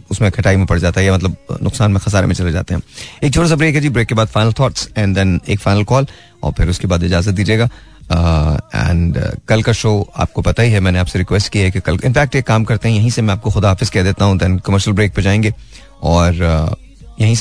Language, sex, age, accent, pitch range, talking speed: Hindi, male, 30-49, native, 90-110 Hz, 250 wpm